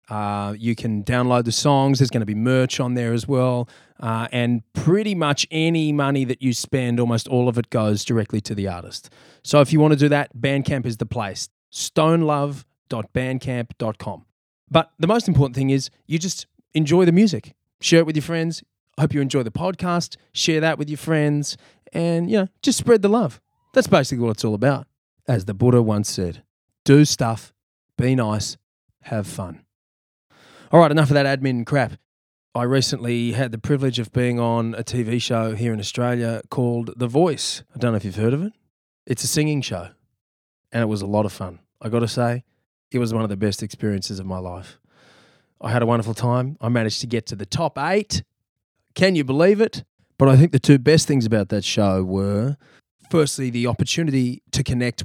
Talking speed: 205 wpm